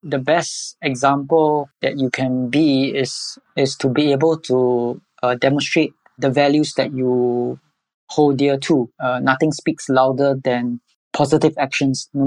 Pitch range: 135-150 Hz